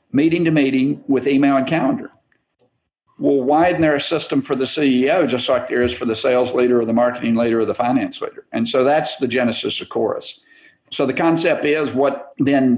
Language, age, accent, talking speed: English, 50-69, American, 200 wpm